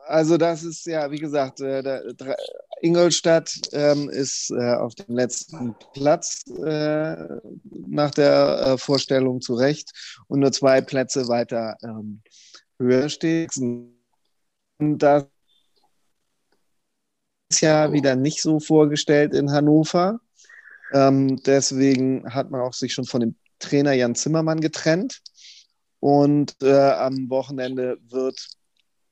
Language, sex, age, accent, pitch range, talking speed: German, male, 30-49, German, 130-160 Hz, 120 wpm